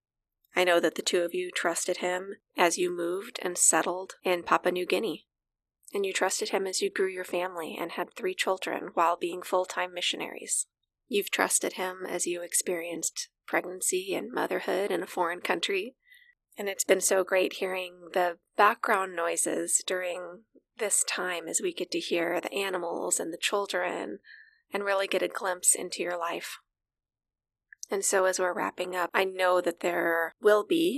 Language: English